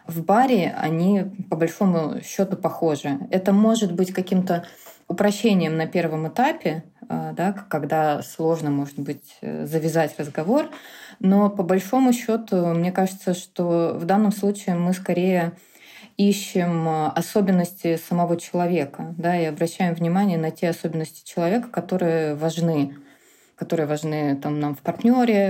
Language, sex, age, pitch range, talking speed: Russian, female, 20-39, 160-195 Hz, 125 wpm